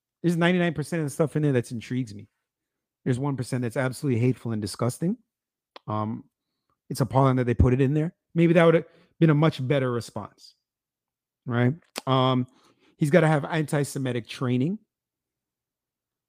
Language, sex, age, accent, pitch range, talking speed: English, male, 40-59, American, 125-160 Hz, 160 wpm